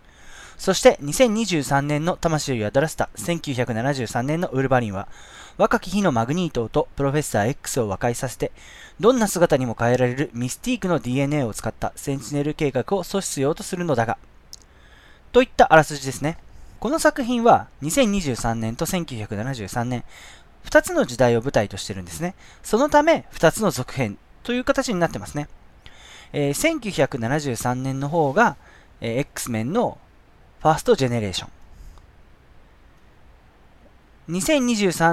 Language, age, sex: Japanese, 20-39, male